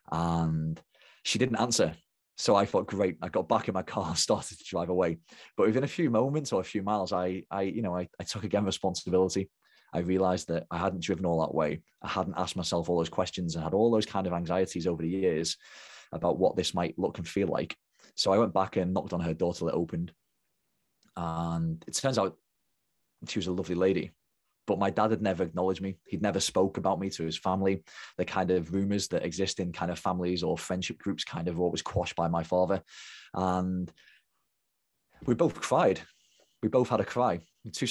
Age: 20-39